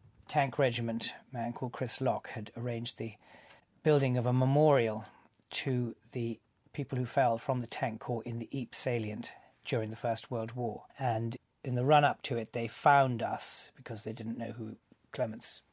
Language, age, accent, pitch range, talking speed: English, 40-59, British, 115-135 Hz, 180 wpm